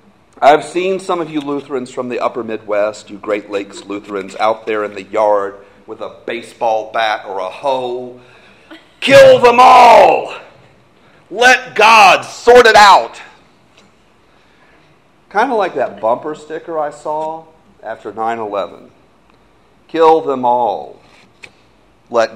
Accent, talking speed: American, 130 wpm